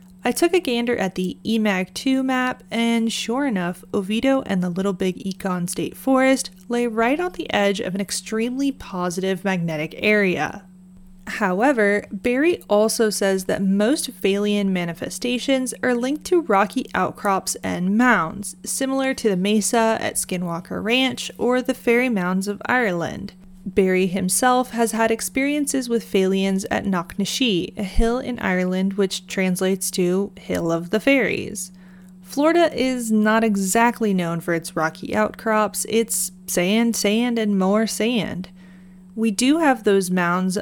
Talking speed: 145 wpm